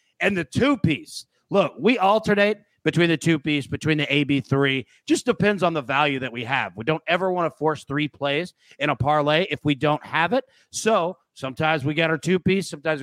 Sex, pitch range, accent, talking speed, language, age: male, 125-160 Hz, American, 200 wpm, English, 30-49